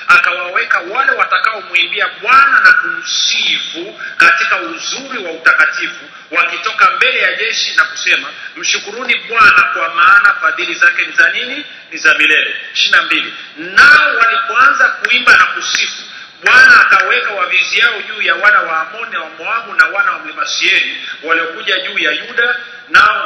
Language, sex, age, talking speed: Swahili, male, 40-59, 140 wpm